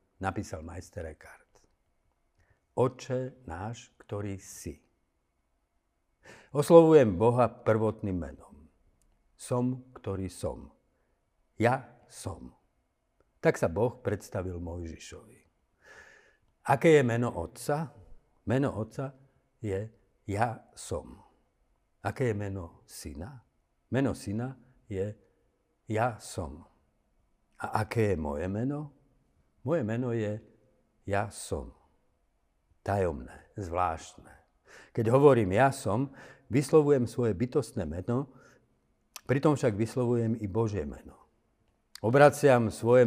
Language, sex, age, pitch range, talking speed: Slovak, male, 60-79, 85-120 Hz, 95 wpm